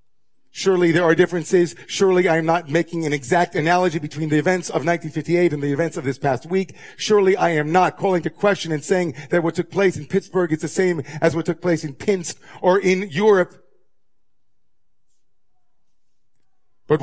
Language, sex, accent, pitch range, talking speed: English, male, American, 155-190 Hz, 185 wpm